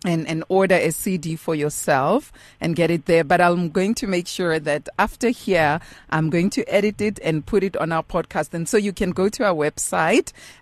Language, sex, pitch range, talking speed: English, female, 150-195 Hz, 220 wpm